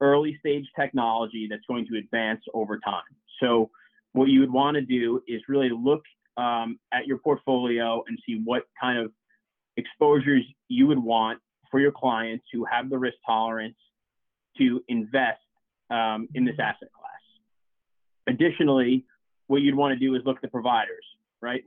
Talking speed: 165 wpm